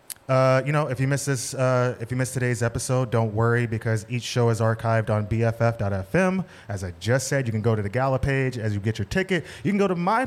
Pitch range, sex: 110-135 Hz, male